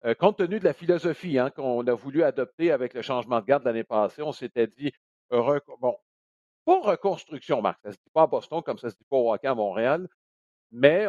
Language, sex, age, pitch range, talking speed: French, male, 50-69, 130-200 Hz, 225 wpm